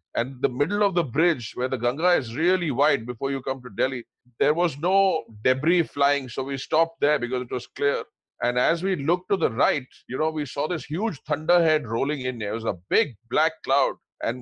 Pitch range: 130-175 Hz